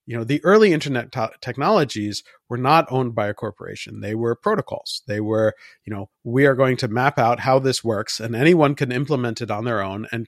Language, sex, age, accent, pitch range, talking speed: English, male, 40-59, American, 110-140 Hz, 215 wpm